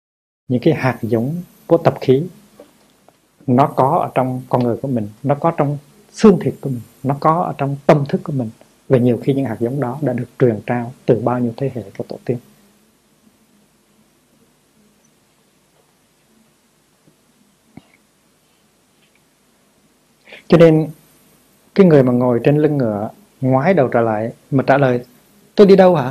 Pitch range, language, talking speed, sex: 130-195 Hz, Vietnamese, 160 wpm, male